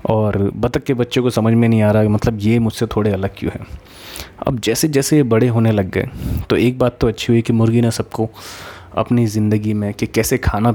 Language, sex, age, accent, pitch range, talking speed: Hindi, male, 20-39, native, 105-130 Hz, 230 wpm